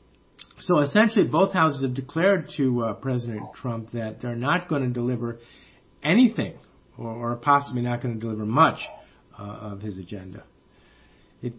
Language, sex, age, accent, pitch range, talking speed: English, male, 50-69, American, 120-155 Hz, 155 wpm